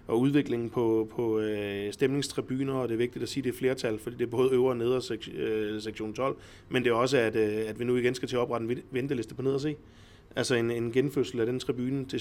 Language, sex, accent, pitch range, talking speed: Danish, male, native, 110-135 Hz, 260 wpm